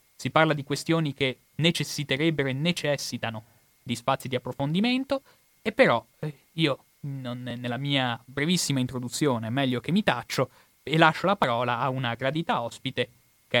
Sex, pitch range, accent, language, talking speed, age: male, 120-145 Hz, native, Italian, 145 wpm, 20-39